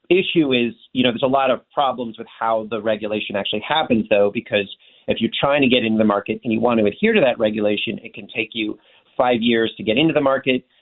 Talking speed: 245 wpm